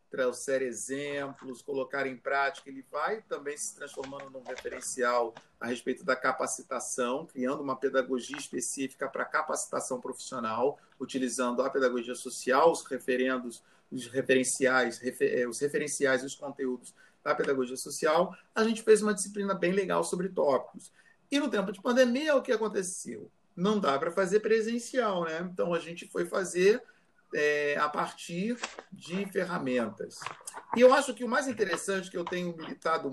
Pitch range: 135-215 Hz